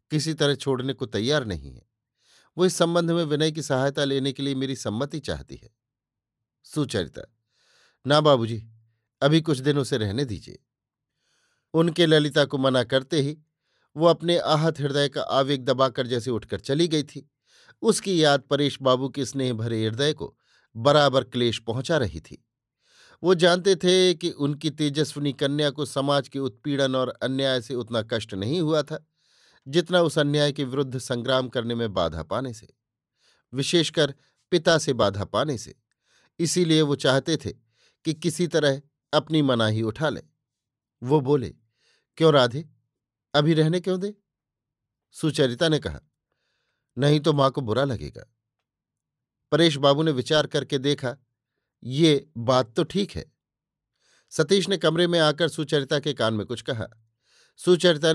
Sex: male